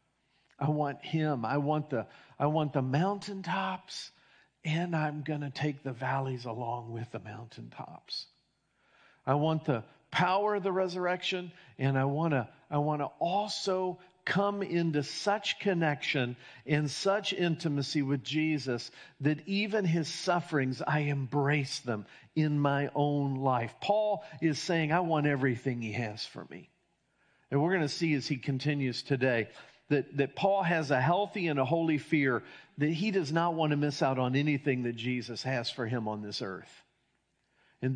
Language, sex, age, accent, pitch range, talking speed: English, male, 50-69, American, 130-165 Hz, 160 wpm